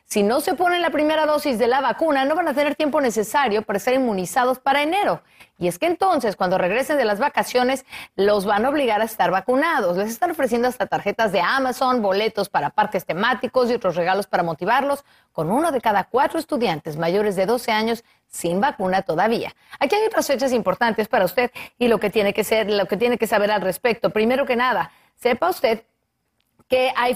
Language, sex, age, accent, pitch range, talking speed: Spanish, female, 40-59, Mexican, 195-265 Hz, 210 wpm